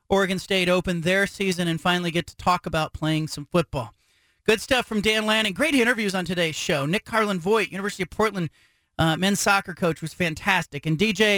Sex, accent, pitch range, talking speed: male, American, 170-225 Hz, 200 wpm